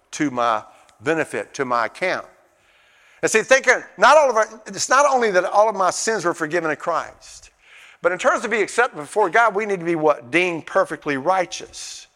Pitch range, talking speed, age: 165-230 Hz, 200 wpm, 50-69